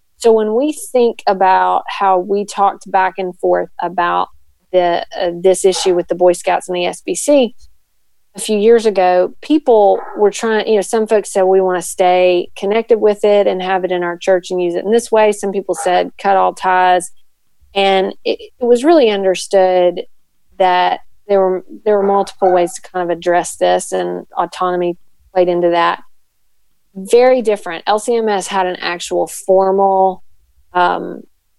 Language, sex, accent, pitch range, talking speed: English, female, American, 180-205 Hz, 170 wpm